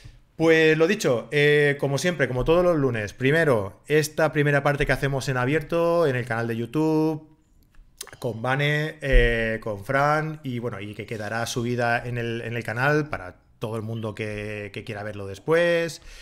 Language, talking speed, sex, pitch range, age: Spanish, 180 wpm, male, 115-145 Hz, 30-49